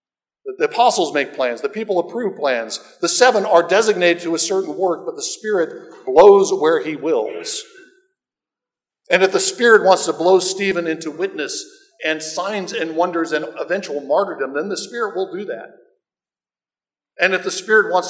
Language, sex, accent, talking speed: English, male, American, 170 wpm